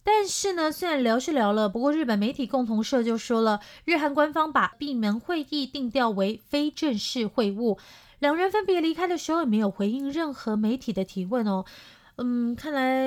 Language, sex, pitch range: Chinese, female, 225-310 Hz